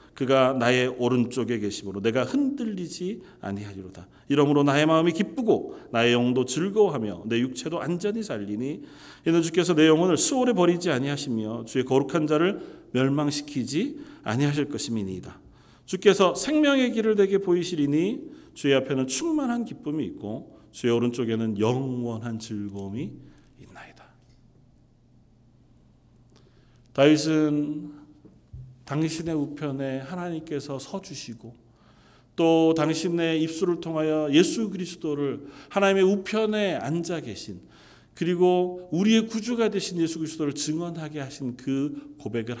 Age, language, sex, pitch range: 40-59, Korean, male, 120-170 Hz